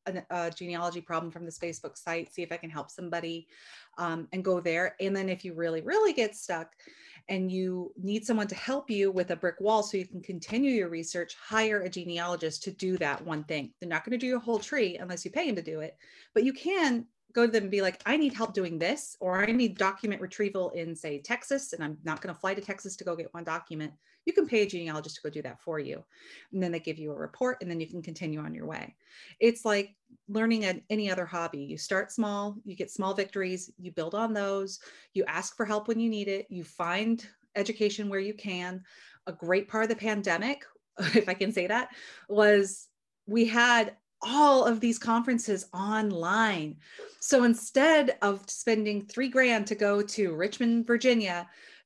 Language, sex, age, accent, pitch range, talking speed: English, female, 30-49, American, 175-225 Hz, 215 wpm